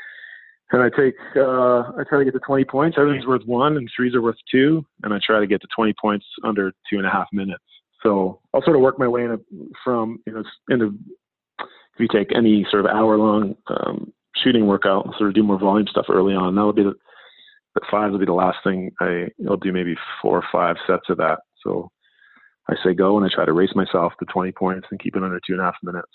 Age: 30-49